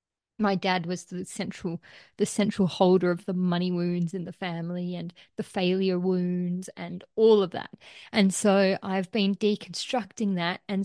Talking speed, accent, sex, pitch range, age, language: 165 wpm, Australian, female, 190-220 Hz, 30-49, English